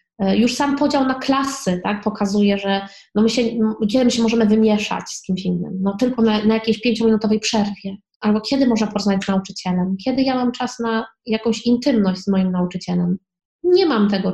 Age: 20-39